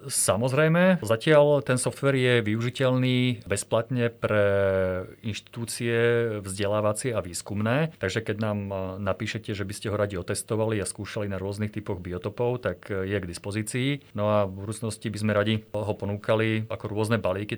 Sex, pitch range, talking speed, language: male, 100-115 Hz, 150 wpm, Slovak